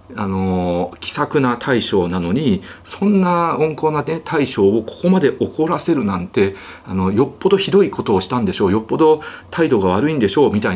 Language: Japanese